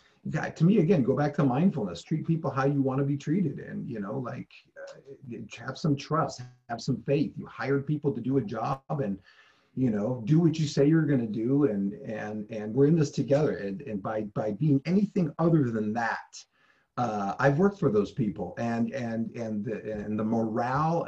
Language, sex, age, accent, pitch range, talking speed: English, male, 40-59, American, 115-145 Hz, 210 wpm